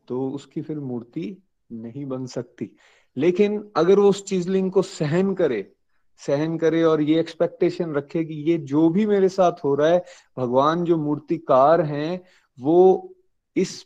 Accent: native